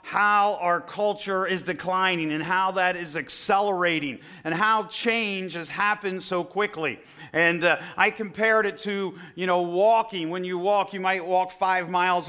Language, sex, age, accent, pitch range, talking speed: English, male, 40-59, American, 170-200 Hz, 165 wpm